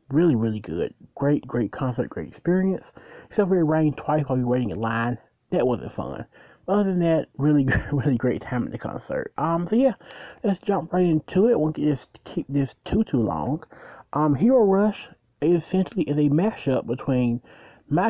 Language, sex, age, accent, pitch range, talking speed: English, male, 30-49, American, 130-180 Hz, 195 wpm